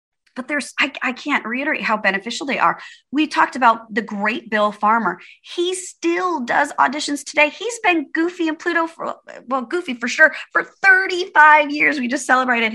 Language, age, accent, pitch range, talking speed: English, 30-49, American, 210-320 Hz, 180 wpm